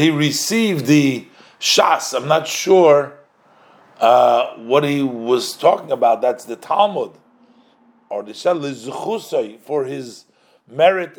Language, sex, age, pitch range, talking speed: English, male, 50-69, 140-185 Hz, 120 wpm